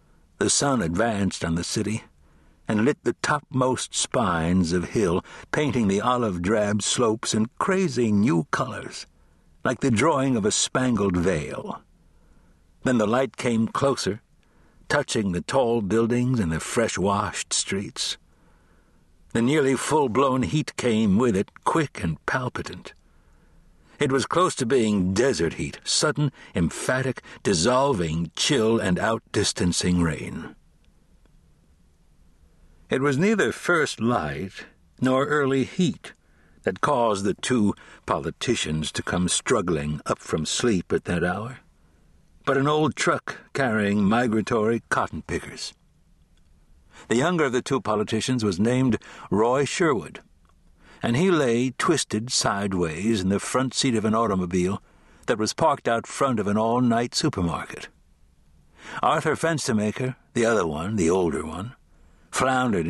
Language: English